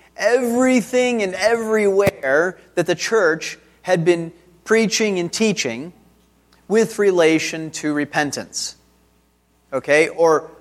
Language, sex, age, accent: English, male, 30-49, American